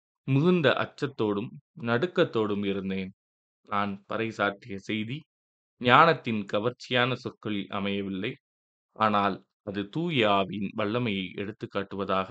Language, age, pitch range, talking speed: Tamil, 20-39, 95-115 Hz, 80 wpm